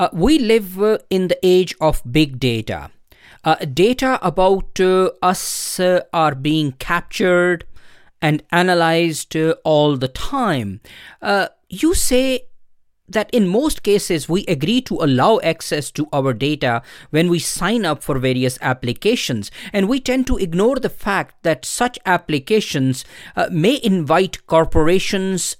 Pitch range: 145-210 Hz